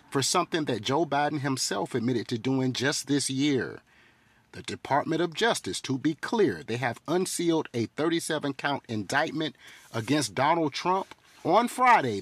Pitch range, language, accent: 120-165 Hz, English, American